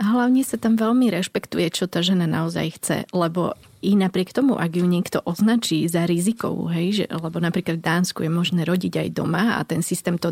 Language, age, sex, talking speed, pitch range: Slovak, 30-49, female, 190 wpm, 170-200 Hz